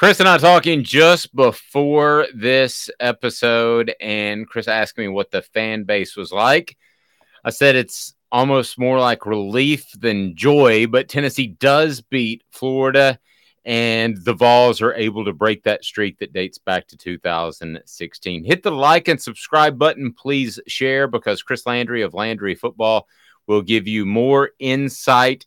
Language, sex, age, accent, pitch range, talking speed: English, male, 30-49, American, 105-140 Hz, 155 wpm